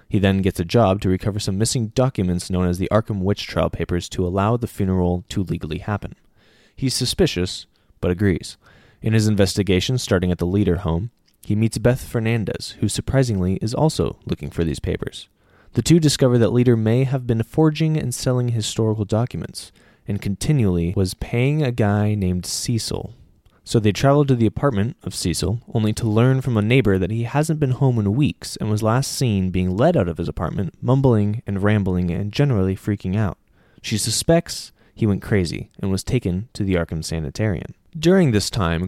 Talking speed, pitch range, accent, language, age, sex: 190 wpm, 95-120 Hz, American, English, 20-39, male